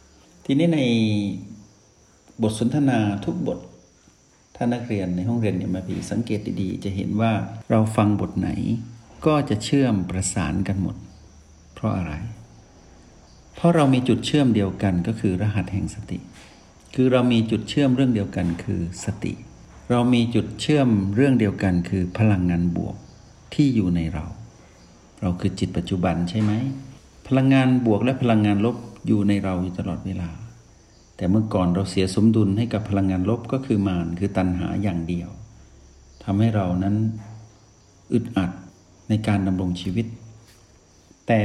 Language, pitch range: Thai, 95-115 Hz